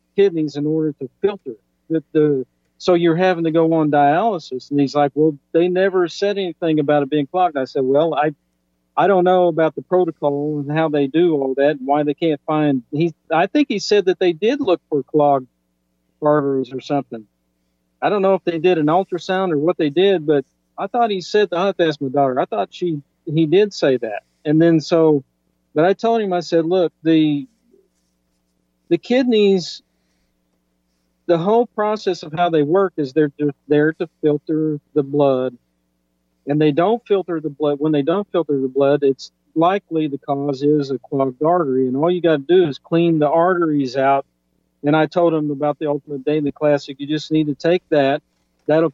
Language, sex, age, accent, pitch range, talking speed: English, male, 50-69, American, 140-175 Hz, 200 wpm